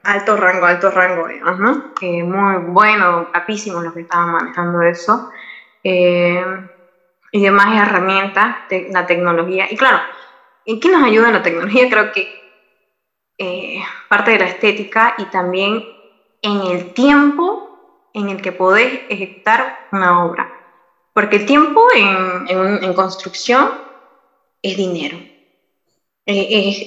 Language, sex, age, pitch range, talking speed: Spanish, female, 20-39, 180-235 Hz, 135 wpm